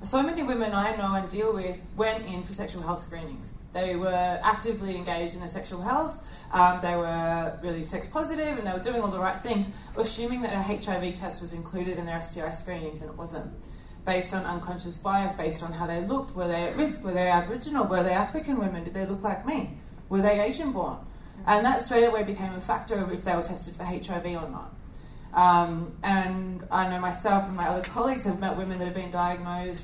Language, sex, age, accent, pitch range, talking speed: English, female, 20-39, Australian, 175-210 Hz, 225 wpm